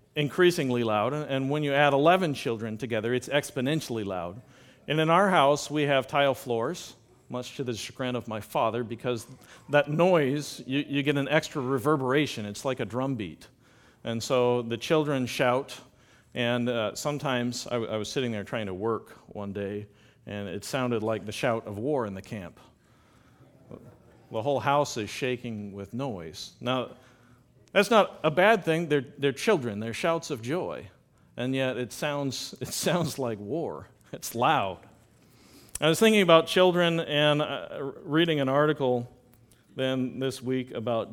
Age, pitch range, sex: 40-59, 115-145 Hz, male